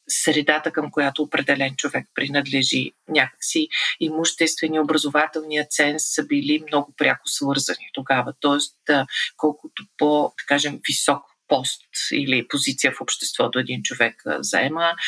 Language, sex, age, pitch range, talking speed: Bulgarian, female, 40-59, 145-160 Hz, 115 wpm